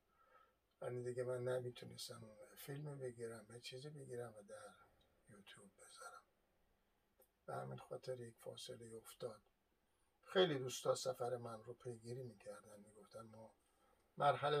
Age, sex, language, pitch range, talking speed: 60-79, male, Persian, 120-145 Hz, 125 wpm